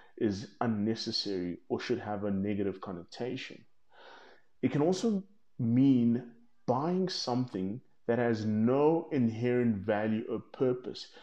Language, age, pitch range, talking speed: English, 30-49, 110-140 Hz, 110 wpm